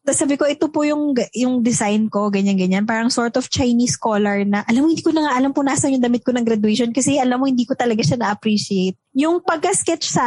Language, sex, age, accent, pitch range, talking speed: English, female, 20-39, Filipino, 240-320 Hz, 235 wpm